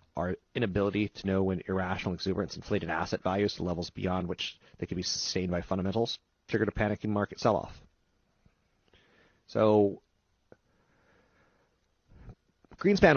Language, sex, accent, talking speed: English, male, American, 125 wpm